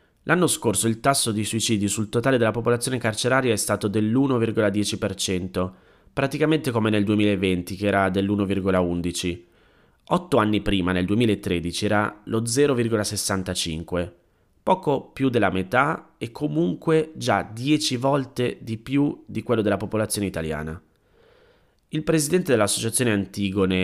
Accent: native